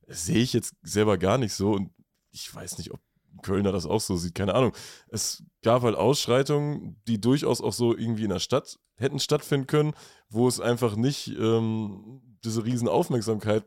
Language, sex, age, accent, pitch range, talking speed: German, male, 20-39, German, 110-130 Hz, 185 wpm